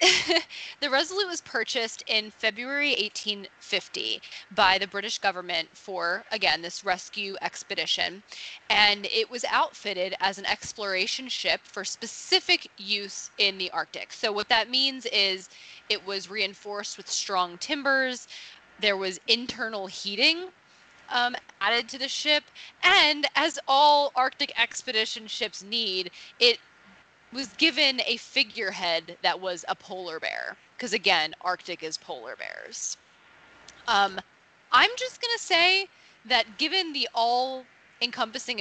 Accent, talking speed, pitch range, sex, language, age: American, 130 wpm, 195-270 Hz, female, English, 20-39